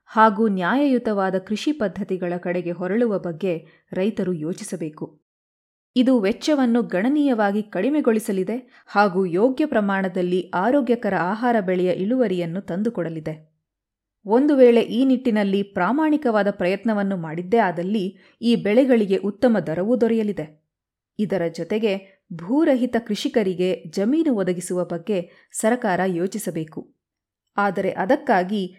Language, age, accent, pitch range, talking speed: Kannada, 20-39, native, 180-235 Hz, 95 wpm